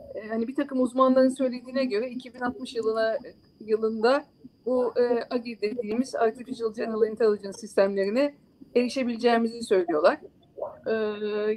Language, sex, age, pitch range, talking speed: Turkish, female, 50-69, 210-270 Hz, 105 wpm